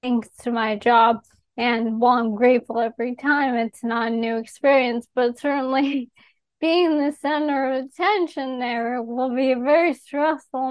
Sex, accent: female, American